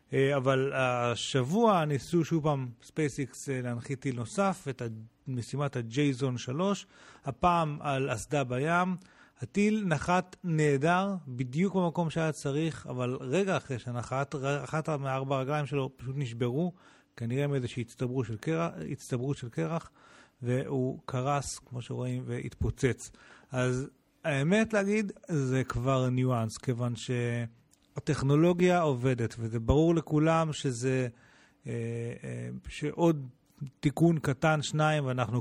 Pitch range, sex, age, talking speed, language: 125-160 Hz, male, 40-59, 110 wpm, Hebrew